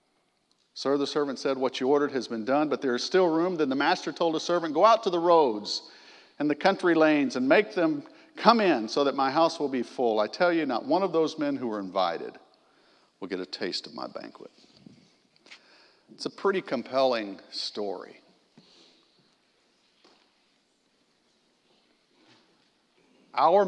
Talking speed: 165 wpm